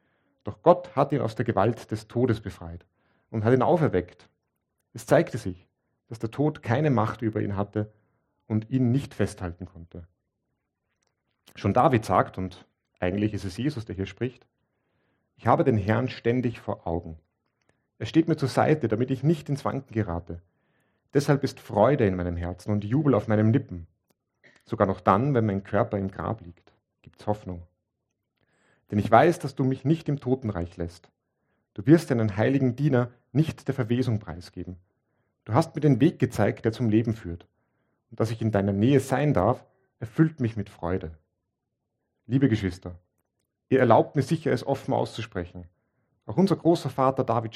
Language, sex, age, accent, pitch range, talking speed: German, male, 40-59, German, 95-130 Hz, 175 wpm